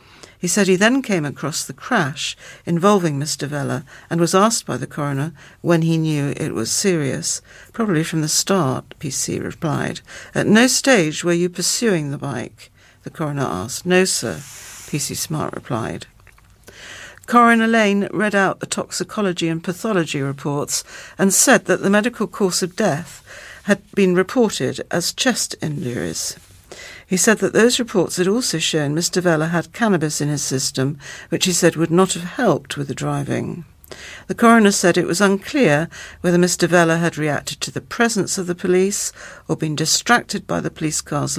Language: English